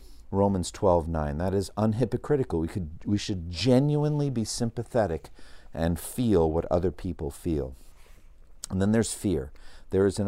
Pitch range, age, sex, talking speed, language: 85-115 Hz, 50-69, male, 145 wpm, English